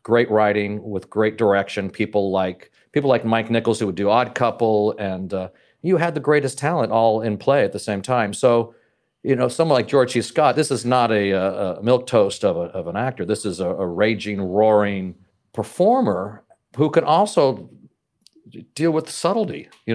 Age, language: 40-59, English